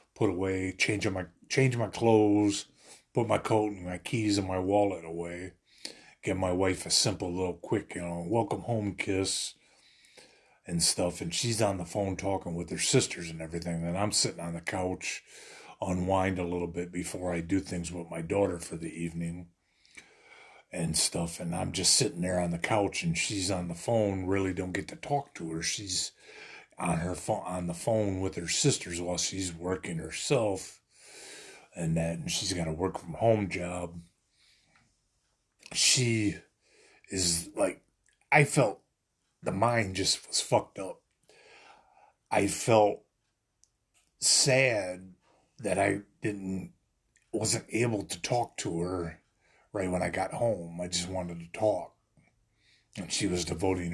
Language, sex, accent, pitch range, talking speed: English, male, American, 85-105 Hz, 160 wpm